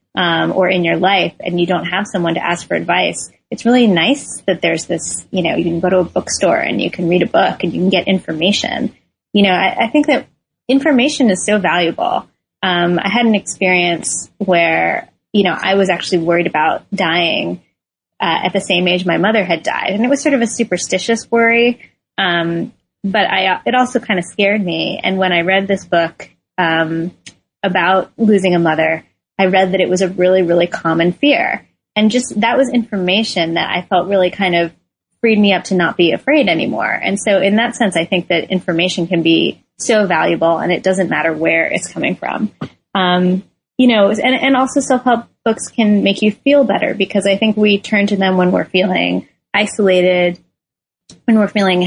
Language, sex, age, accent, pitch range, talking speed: English, female, 20-39, American, 175-210 Hz, 205 wpm